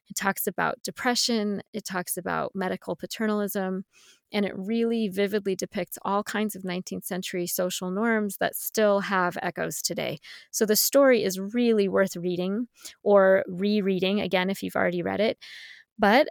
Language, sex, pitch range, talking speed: English, female, 190-225 Hz, 155 wpm